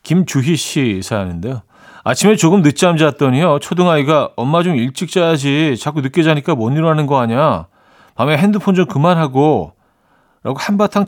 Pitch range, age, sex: 120-160 Hz, 40-59, male